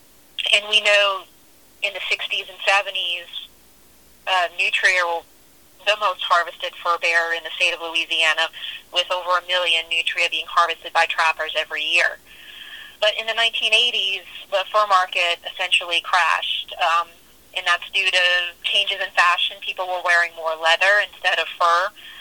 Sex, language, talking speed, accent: female, English, 150 wpm, American